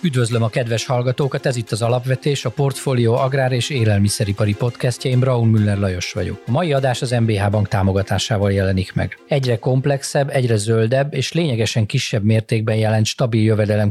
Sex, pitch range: male, 110-130 Hz